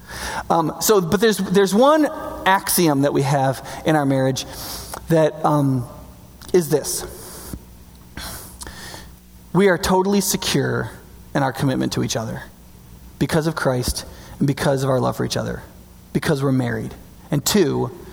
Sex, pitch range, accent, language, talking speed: male, 130-195 Hz, American, English, 140 wpm